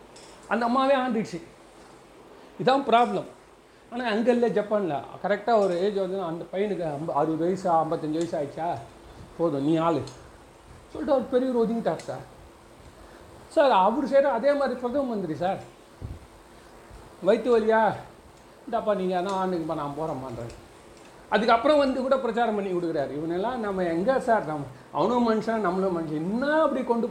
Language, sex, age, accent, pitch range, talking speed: Tamil, male, 40-59, native, 165-230 Hz, 140 wpm